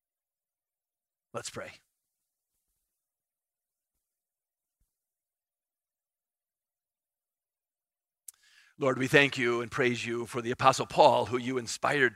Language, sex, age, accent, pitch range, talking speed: English, male, 50-69, American, 120-140 Hz, 80 wpm